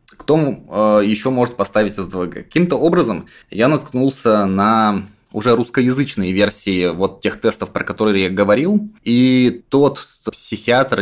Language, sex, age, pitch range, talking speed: Russian, male, 20-39, 95-130 Hz, 125 wpm